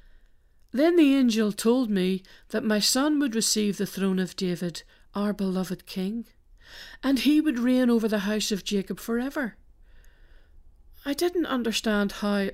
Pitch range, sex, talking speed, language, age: 185-240 Hz, female, 150 wpm, English, 50-69